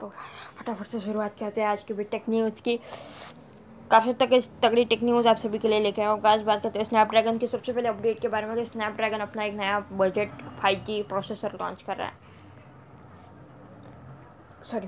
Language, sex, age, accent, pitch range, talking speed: Hindi, female, 20-39, native, 195-250 Hz, 170 wpm